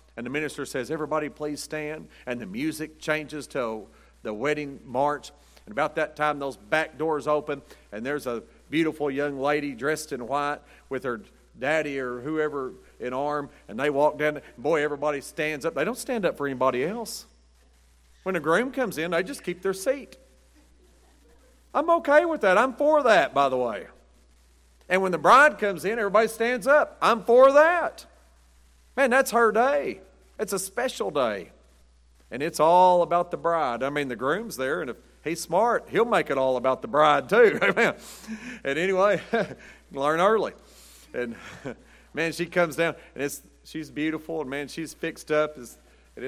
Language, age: English, 40-59